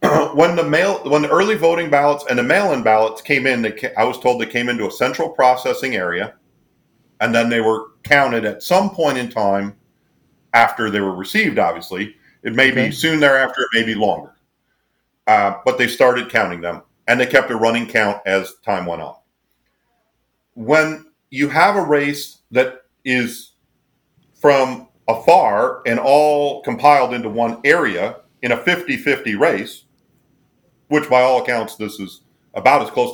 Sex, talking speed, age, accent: male, 165 wpm, 40-59, American